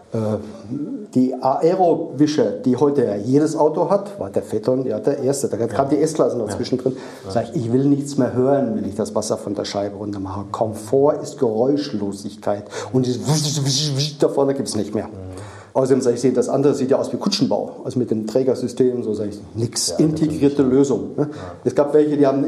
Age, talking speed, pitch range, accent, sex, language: 40-59, 200 wpm, 125-170 Hz, German, male, German